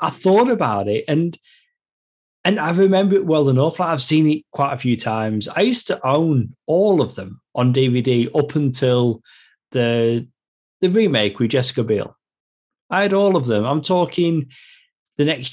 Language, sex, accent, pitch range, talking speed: English, male, British, 120-170 Hz, 170 wpm